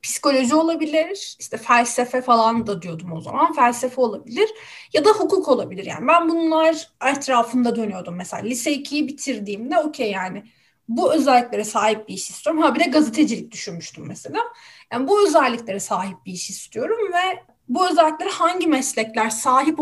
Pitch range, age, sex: 235-330 Hz, 30-49, female